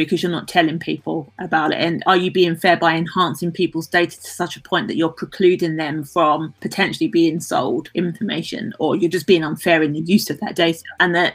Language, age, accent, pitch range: English, 30-49, British, 160-185 Hz